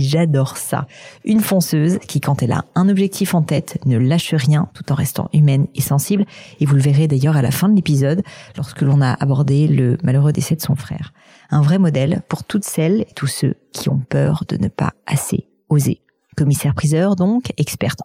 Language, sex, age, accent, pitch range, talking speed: French, female, 40-59, French, 140-170 Hz, 205 wpm